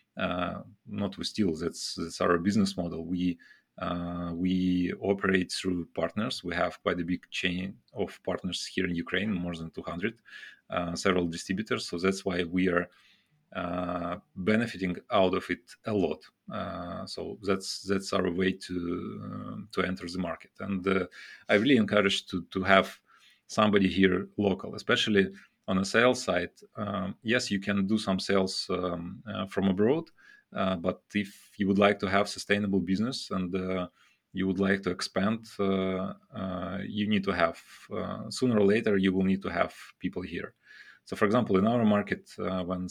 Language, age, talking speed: English, 30-49, 175 wpm